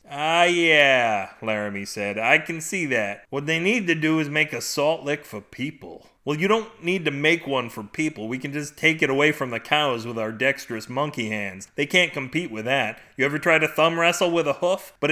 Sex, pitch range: male, 120-160 Hz